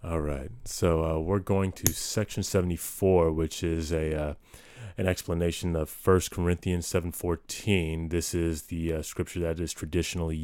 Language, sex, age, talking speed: English, male, 30-49, 155 wpm